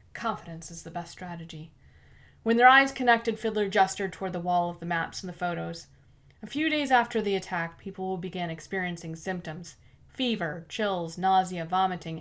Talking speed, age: 170 wpm, 30-49